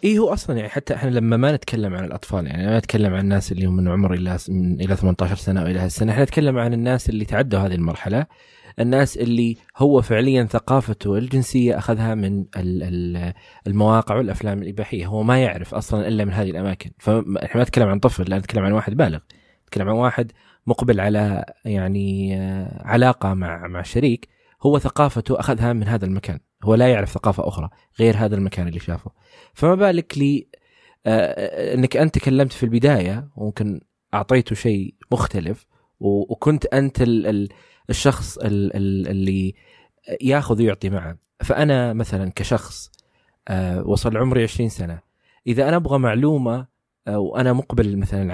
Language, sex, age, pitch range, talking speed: Arabic, male, 20-39, 95-125 Hz, 150 wpm